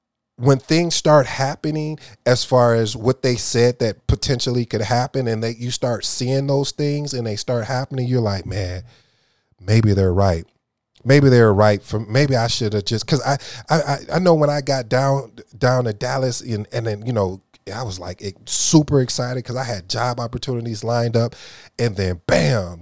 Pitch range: 105-130 Hz